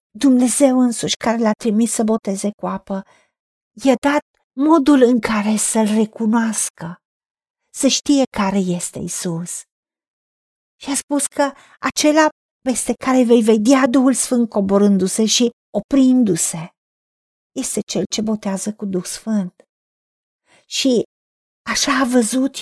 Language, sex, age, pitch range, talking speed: Romanian, female, 50-69, 215-275 Hz, 120 wpm